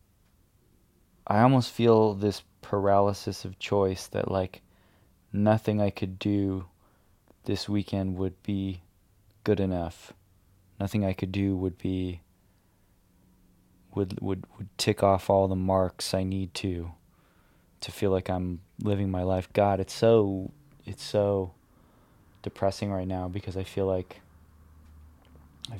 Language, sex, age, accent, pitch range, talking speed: English, male, 20-39, American, 90-100 Hz, 130 wpm